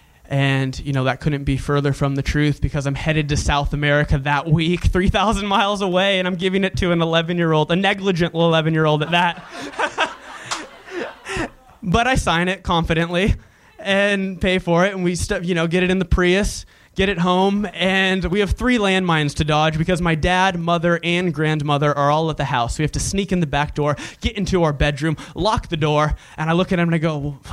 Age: 20-39